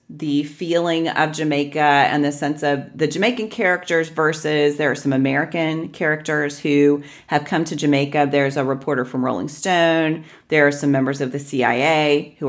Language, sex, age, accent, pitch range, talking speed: English, female, 40-59, American, 140-170 Hz, 175 wpm